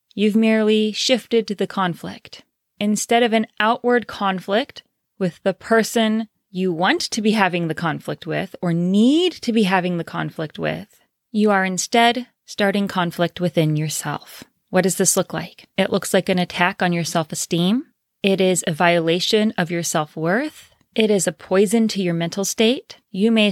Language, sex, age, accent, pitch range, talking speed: English, female, 30-49, American, 180-225 Hz, 175 wpm